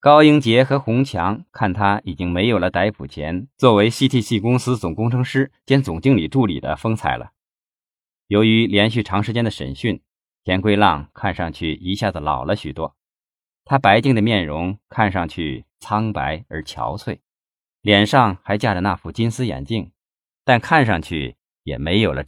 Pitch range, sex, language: 85-125 Hz, male, Chinese